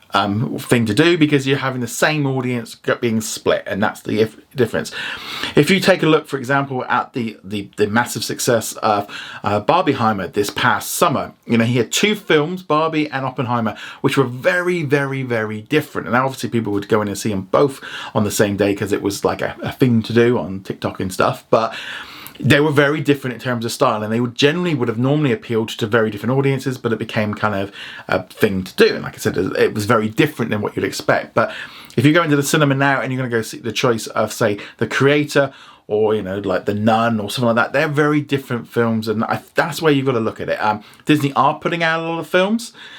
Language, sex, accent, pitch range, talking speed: English, male, British, 110-145 Hz, 245 wpm